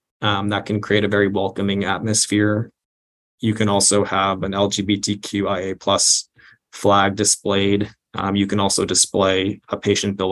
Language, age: English, 20-39